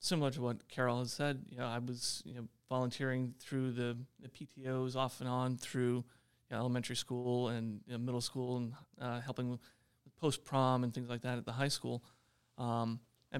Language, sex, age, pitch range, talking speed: English, male, 30-49, 120-130 Hz, 200 wpm